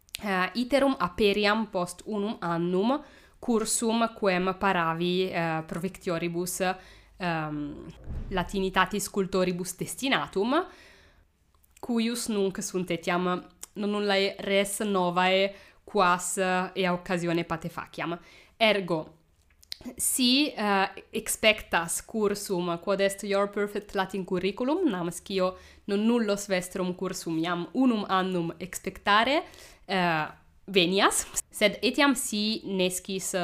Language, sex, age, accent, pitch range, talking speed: English, female, 20-39, Italian, 180-210 Hz, 100 wpm